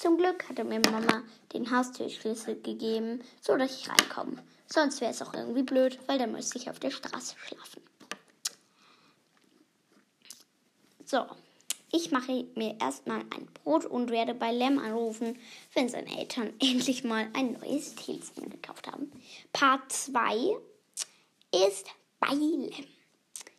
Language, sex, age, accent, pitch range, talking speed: German, female, 10-29, German, 235-280 Hz, 130 wpm